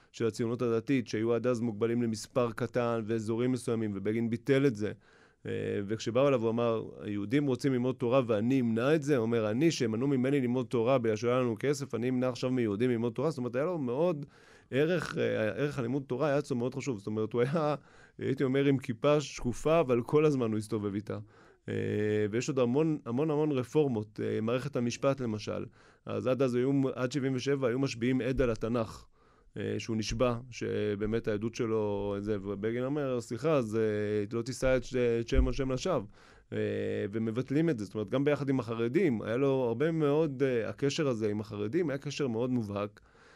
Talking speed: 175 wpm